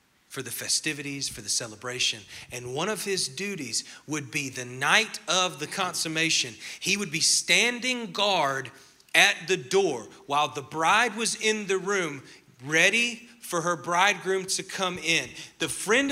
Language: English